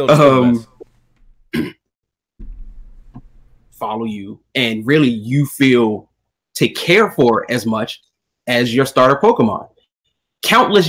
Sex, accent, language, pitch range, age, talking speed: male, American, English, 115-170 Hz, 30-49, 95 wpm